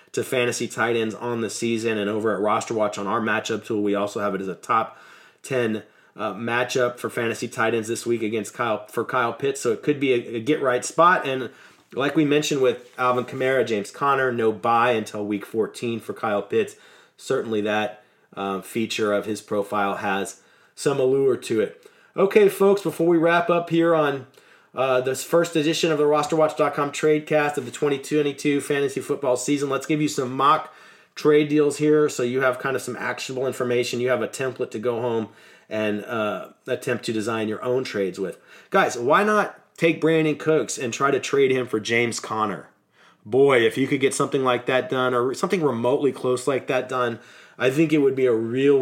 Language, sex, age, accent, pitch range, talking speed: English, male, 30-49, American, 115-150 Hz, 205 wpm